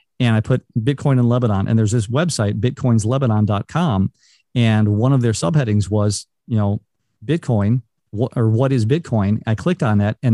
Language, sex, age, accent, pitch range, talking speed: English, male, 40-59, American, 110-130 Hz, 175 wpm